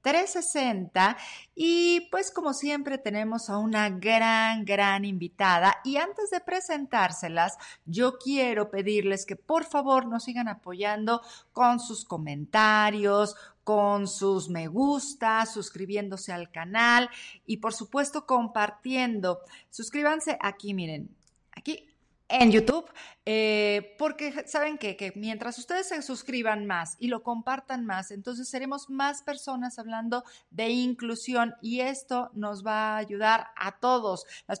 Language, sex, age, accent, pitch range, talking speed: Spanish, female, 40-59, Mexican, 205-260 Hz, 130 wpm